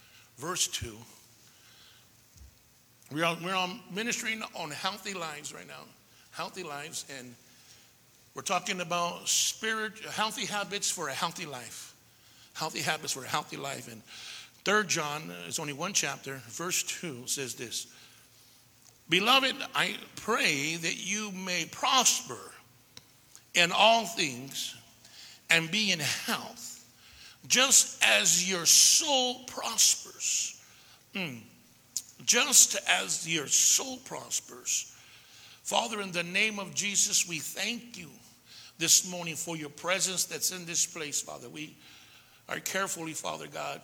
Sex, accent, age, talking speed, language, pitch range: male, American, 60-79, 120 wpm, English, 125-185 Hz